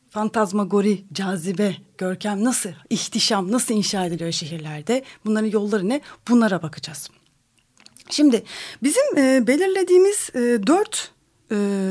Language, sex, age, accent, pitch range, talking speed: Turkish, female, 30-49, native, 180-250 Hz, 95 wpm